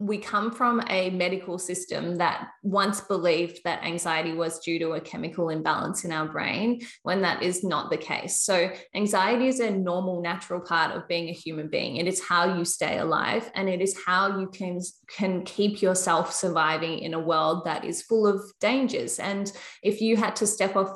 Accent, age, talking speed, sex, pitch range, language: Australian, 20-39, 200 wpm, female, 170-200 Hz, English